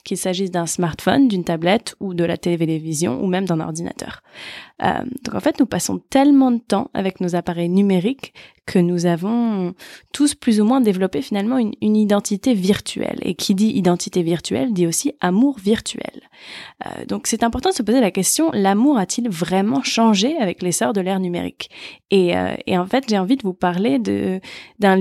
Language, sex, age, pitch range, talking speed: French, female, 20-39, 180-225 Hz, 190 wpm